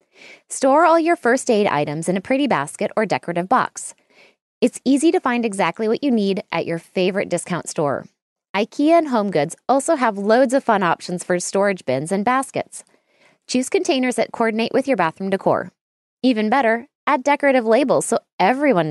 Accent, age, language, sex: American, 20-39, English, female